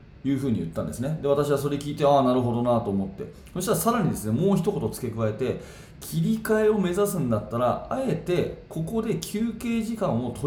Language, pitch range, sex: Japanese, 115-175 Hz, male